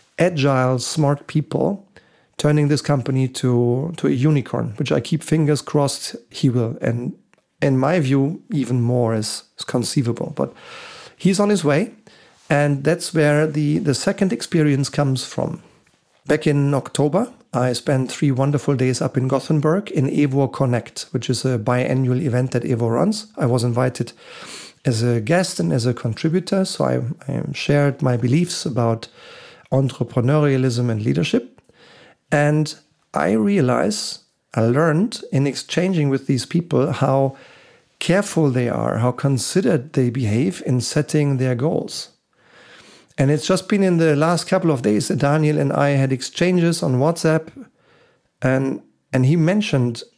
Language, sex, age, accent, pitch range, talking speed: German, male, 40-59, German, 130-160 Hz, 150 wpm